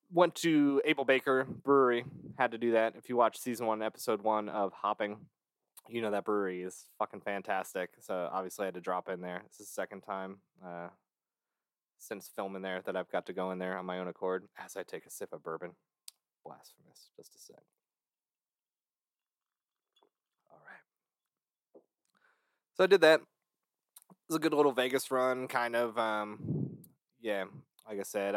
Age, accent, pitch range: 20-39, American, 95-130 Hz